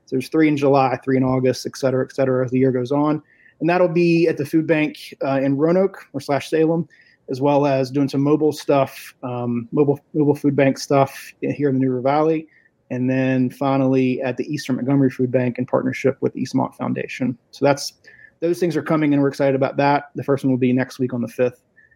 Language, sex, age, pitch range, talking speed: English, male, 30-49, 130-155 Hz, 225 wpm